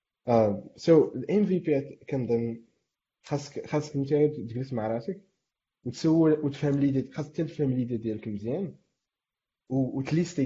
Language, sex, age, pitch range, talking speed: Arabic, male, 20-39, 120-155 Hz, 120 wpm